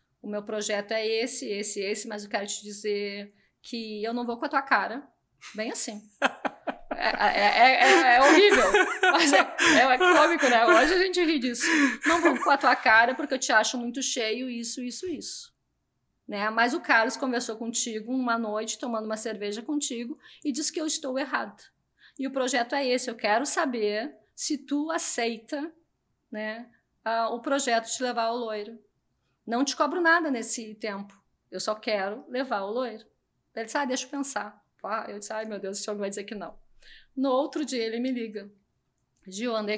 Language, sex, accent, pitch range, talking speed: Portuguese, female, Brazilian, 220-275 Hz, 190 wpm